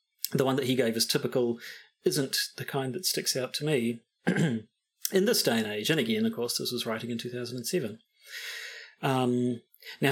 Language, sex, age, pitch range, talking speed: English, male, 40-59, 120-175 Hz, 185 wpm